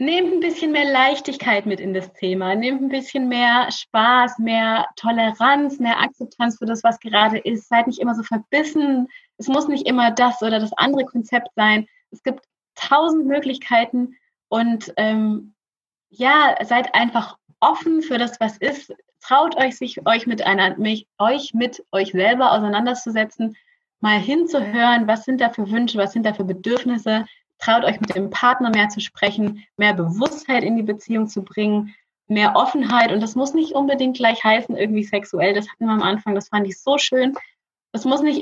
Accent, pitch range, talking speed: German, 200-255 Hz, 175 wpm